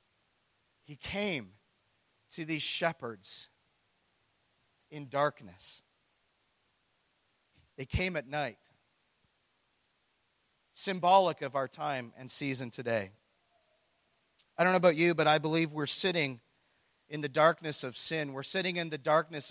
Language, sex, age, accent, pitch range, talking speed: English, male, 40-59, American, 145-195 Hz, 115 wpm